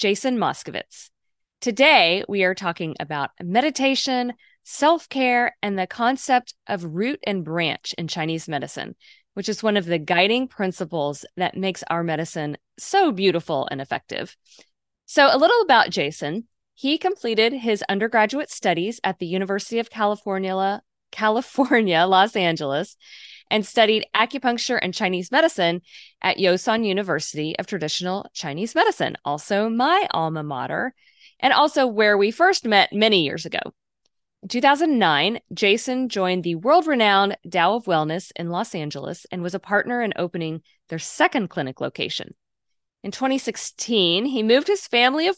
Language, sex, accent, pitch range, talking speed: English, female, American, 175-250 Hz, 145 wpm